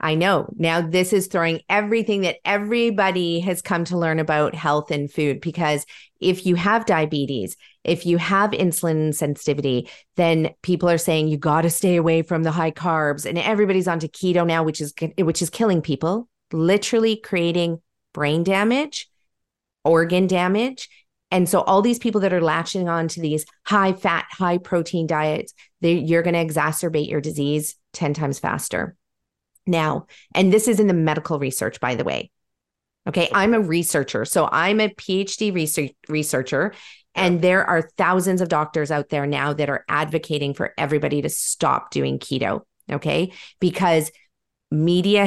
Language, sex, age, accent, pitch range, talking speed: English, female, 40-59, American, 155-190 Hz, 165 wpm